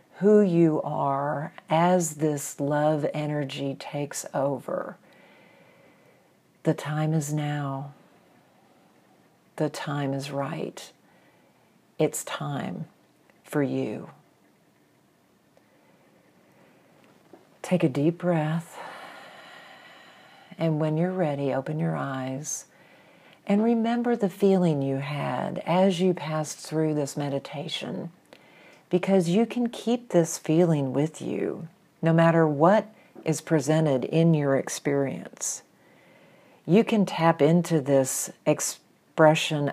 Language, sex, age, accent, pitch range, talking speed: English, female, 50-69, American, 145-175 Hz, 100 wpm